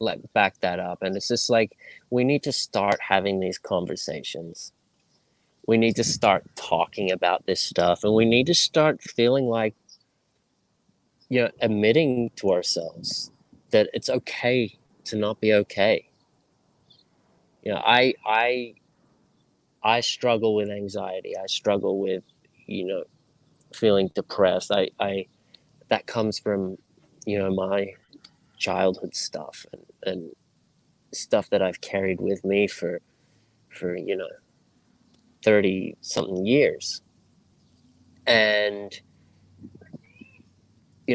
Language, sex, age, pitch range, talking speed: English, male, 30-49, 100-115 Hz, 120 wpm